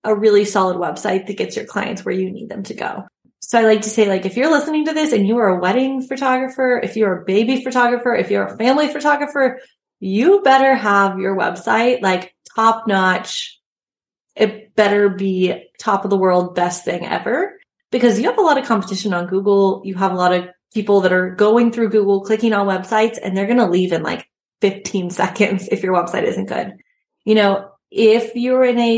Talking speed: 210 wpm